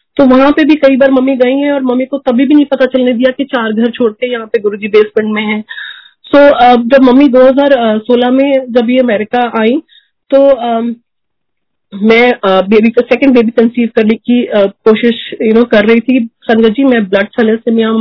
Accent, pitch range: native, 220-260 Hz